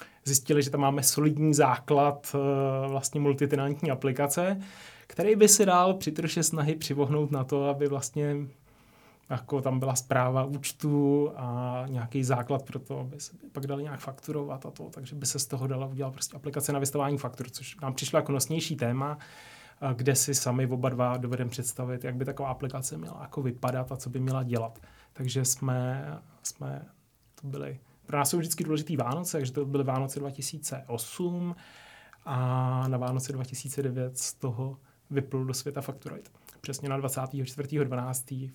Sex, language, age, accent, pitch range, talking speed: male, Czech, 30-49, native, 130-145 Hz, 165 wpm